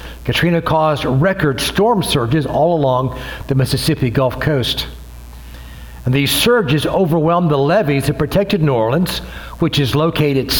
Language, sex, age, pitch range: English, male, 60-79, 120-165 Hz